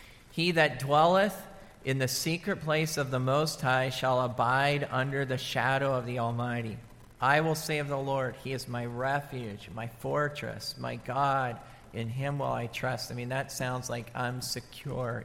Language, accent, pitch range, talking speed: English, American, 125-145 Hz, 175 wpm